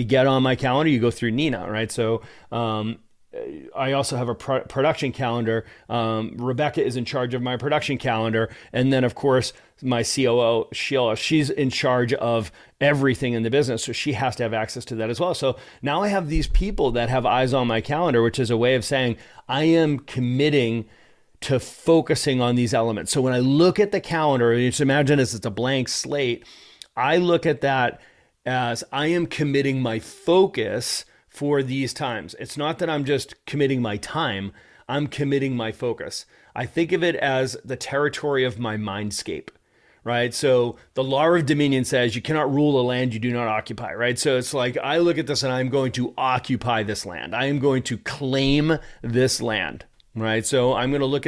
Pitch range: 120-145 Hz